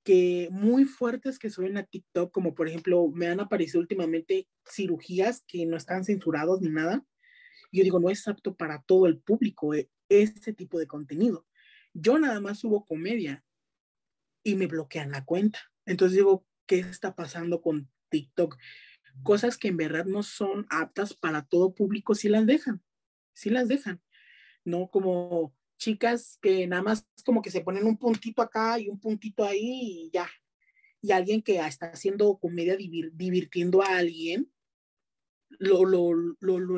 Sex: male